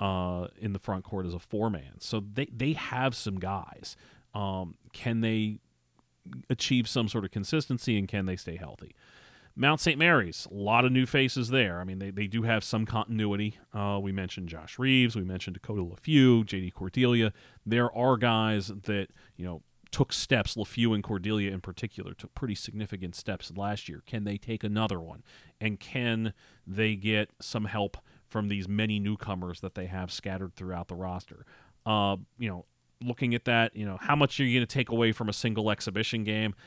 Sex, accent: male, American